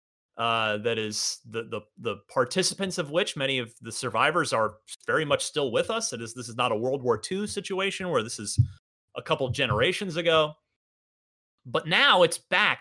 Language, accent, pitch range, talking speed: English, American, 130-190 Hz, 190 wpm